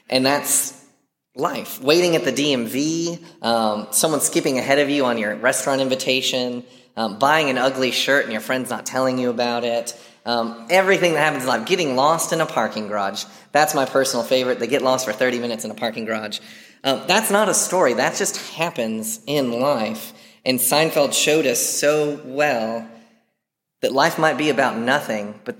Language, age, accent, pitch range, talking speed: English, 20-39, American, 115-150 Hz, 185 wpm